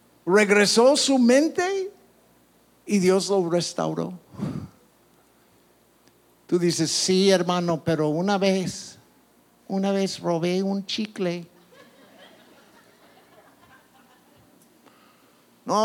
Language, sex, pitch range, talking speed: English, male, 145-185 Hz, 75 wpm